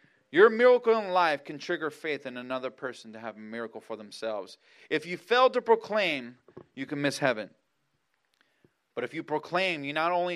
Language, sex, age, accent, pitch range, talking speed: English, male, 30-49, American, 110-145 Hz, 185 wpm